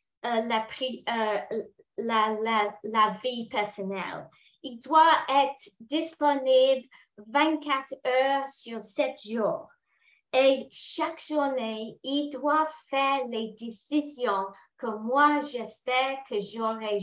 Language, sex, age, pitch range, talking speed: English, female, 30-49, 220-275 Hz, 110 wpm